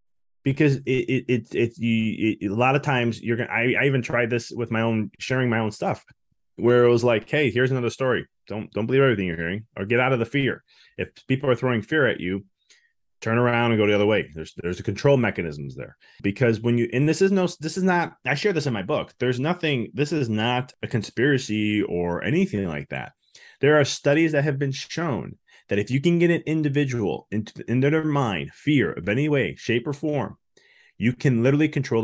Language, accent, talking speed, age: English, American, 225 wpm, 20-39